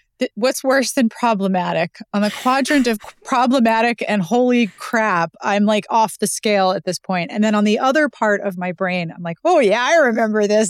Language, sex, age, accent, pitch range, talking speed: English, female, 30-49, American, 180-235 Hz, 200 wpm